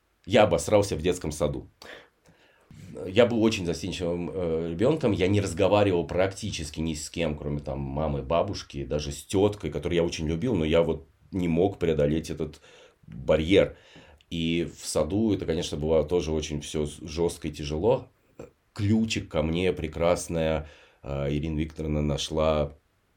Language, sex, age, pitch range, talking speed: Russian, male, 30-49, 80-100 Hz, 140 wpm